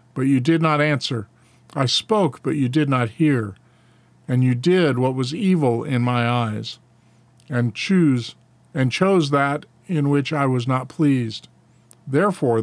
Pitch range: 120-155 Hz